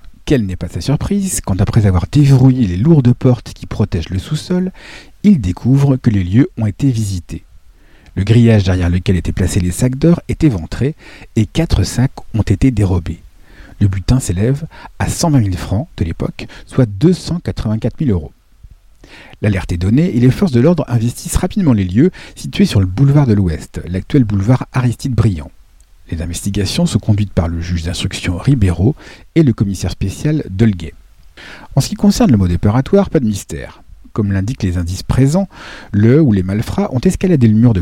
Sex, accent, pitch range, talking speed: male, French, 95-135 Hz, 180 wpm